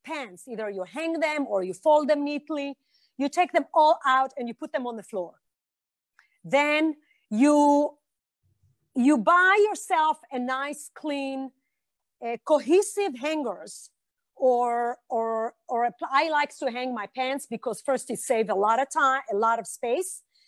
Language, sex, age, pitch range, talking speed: Hebrew, female, 40-59, 235-315 Hz, 160 wpm